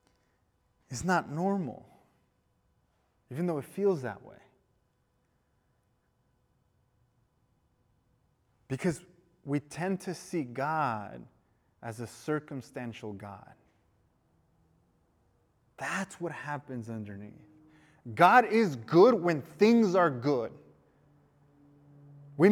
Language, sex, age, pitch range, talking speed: English, male, 30-49, 125-185 Hz, 85 wpm